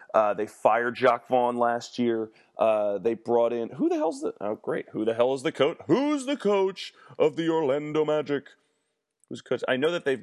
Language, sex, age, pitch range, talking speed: English, male, 30-49, 110-135 Hz, 215 wpm